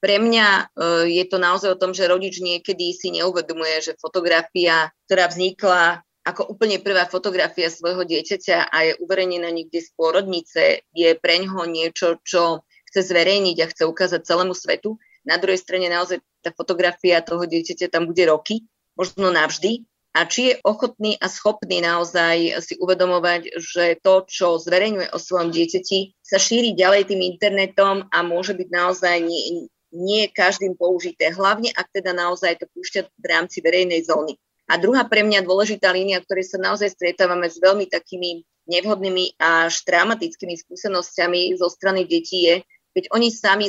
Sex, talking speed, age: female, 155 wpm, 30-49